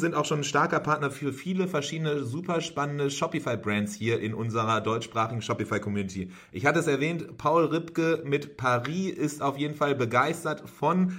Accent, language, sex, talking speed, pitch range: German, English, male, 165 wpm, 135-160 Hz